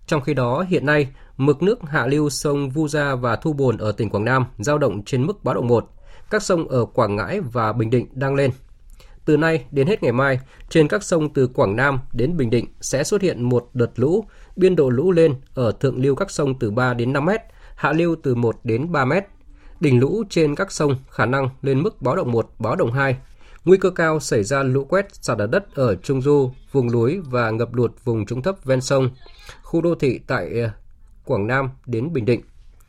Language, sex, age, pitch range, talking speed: Vietnamese, male, 20-39, 120-155 Hz, 230 wpm